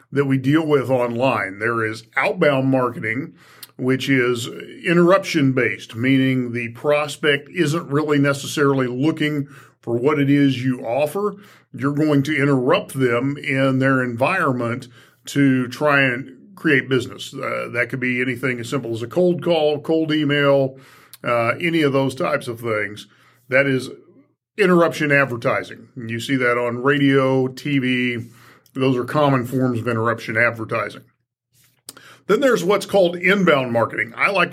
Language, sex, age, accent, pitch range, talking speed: English, male, 50-69, American, 125-155 Hz, 145 wpm